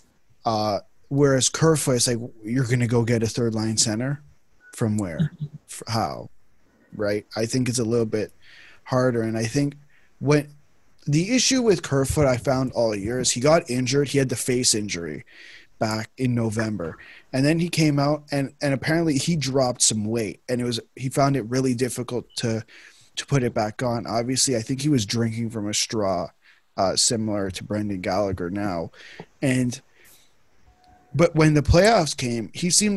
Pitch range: 115-145 Hz